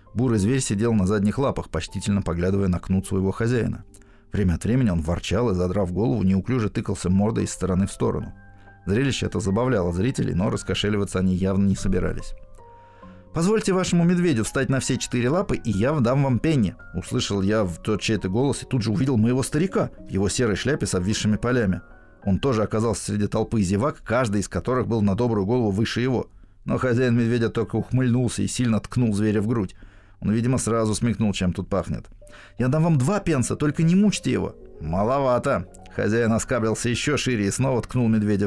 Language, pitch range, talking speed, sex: Russian, 100-130 Hz, 185 wpm, male